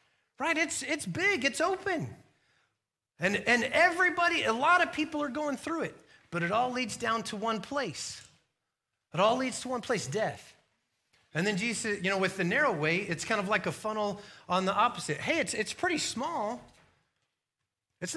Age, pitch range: 30-49, 155-220 Hz